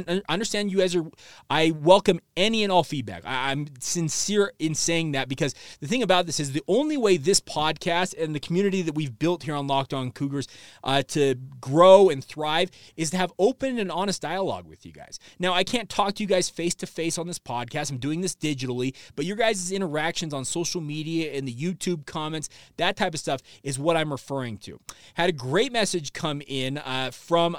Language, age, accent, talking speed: English, 30-49, American, 205 wpm